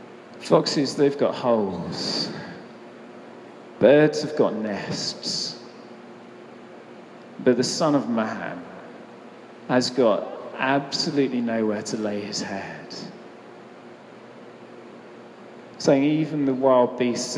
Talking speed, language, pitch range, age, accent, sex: 90 wpm, English, 125-145 Hz, 40-59, British, male